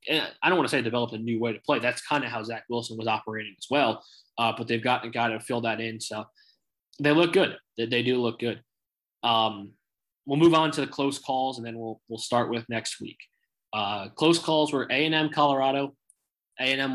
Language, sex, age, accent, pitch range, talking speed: English, male, 20-39, American, 115-145 Hz, 225 wpm